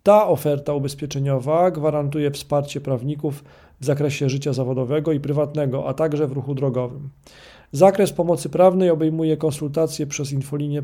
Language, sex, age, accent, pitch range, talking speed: Polish, male, 40-59, native, 140-170 Hz, 135 wpm